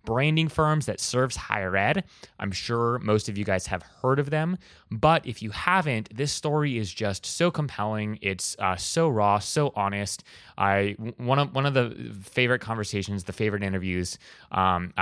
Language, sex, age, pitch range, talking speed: English, male, 20-39, 100-130 Hz, 175 wpm